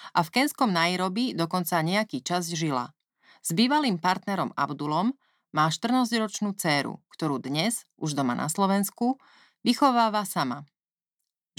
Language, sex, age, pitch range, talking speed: Slovak, female, 30-49, 145-210 Hz, 125 wpm